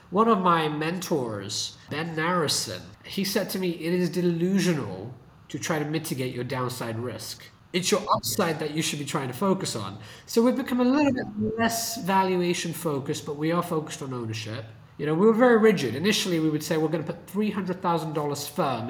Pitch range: 130-180 Hz